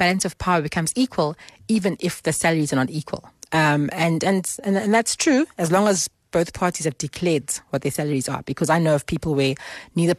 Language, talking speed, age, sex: English, 220 wpm, 30-49, female